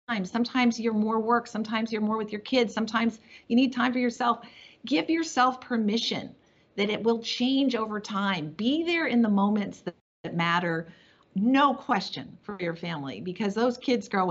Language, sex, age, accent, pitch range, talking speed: English, female, 50-69, American, 175-230 Hz, 175 wpm